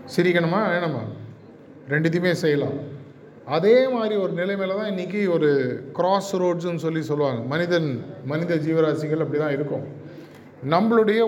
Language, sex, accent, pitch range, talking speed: Tamil, male, native, 150-190 Hz, 115 wpm